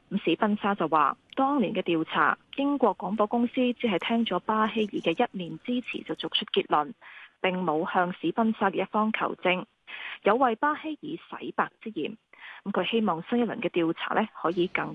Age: 20-39